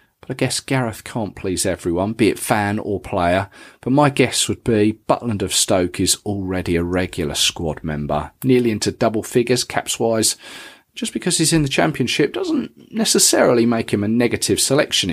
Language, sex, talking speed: English, male, 170 wpm